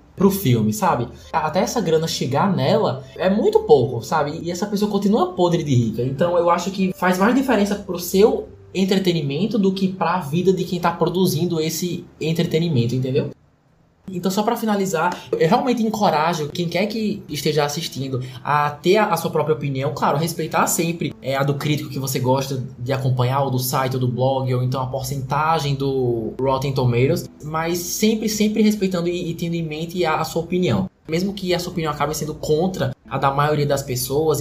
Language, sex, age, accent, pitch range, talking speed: Portuguese, male, 20-39, Brazilian, 135-185 Hz, 185 wpm